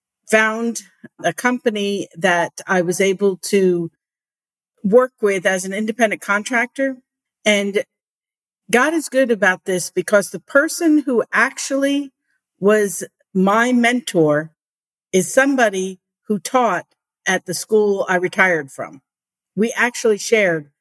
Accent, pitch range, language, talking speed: American, 190-250 Hz, English, 120 wpm